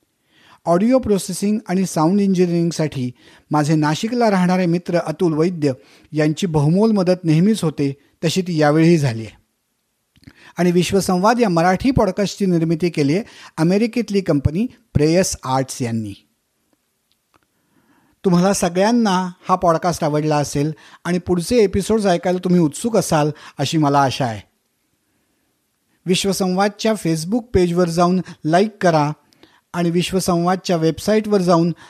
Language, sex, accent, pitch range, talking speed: Marathi, male, native, 150-190 Hz, 115 wpm